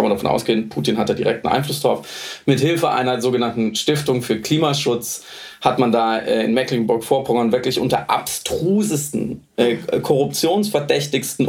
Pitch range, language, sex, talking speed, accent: 130-165 Hz, German, male, 135 wpm, German